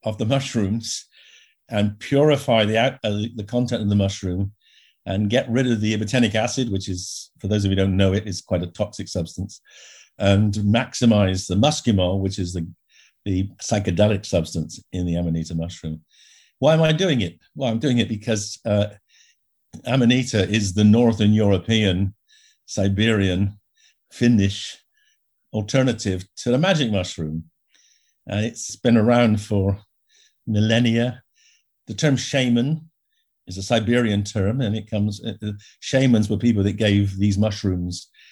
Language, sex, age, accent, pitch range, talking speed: English, male, 50-69, British, 95-120 Hz, 150 wpm